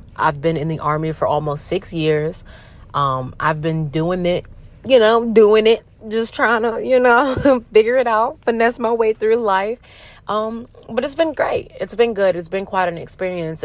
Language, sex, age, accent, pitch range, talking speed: English, female, 30-49, American, 160-210 Hz, 195 wpm